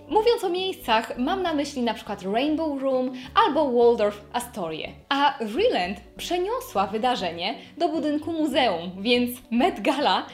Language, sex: Polish, female